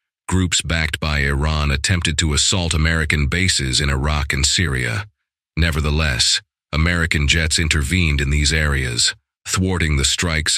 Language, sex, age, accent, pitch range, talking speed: English, male, 40-59, American, 70-85 Hz, 130 wpm